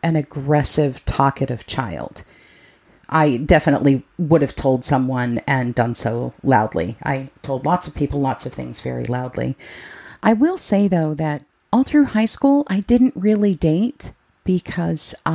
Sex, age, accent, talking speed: female, 40-59, American, 150 wpm